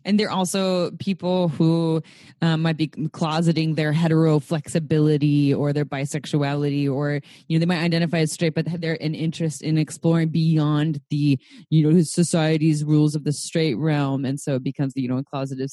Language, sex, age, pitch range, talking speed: English, female, 20-39, 145-175 Hz, 185 wpm